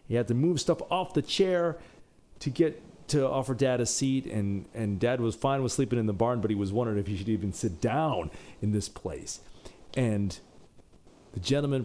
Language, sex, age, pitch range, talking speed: English, male, 40-59, 95-130 Hz, 210 wpm